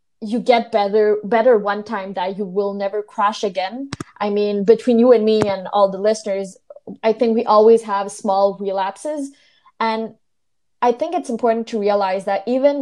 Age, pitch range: 20-39, 195-235 Hz